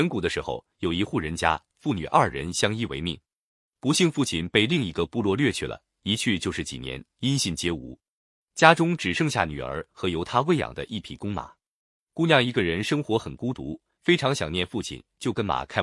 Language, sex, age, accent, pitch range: Chinese, male, 30-49, native, 85-140 Hz